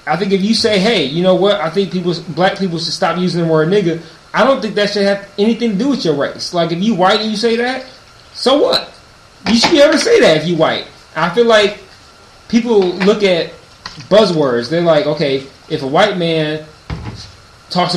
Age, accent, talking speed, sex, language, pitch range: 20-39, American, 225 wpm, male, English, 150-195 Hz